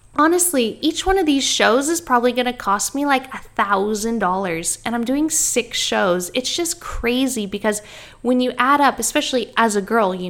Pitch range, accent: 195-235 Hz, American